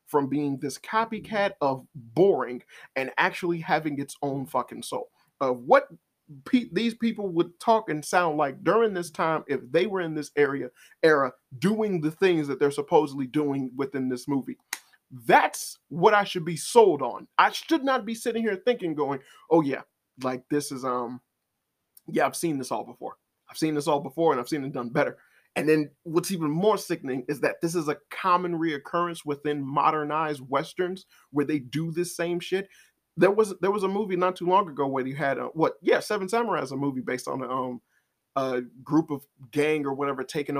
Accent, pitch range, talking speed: American, 135-175 Hz, 200 wpm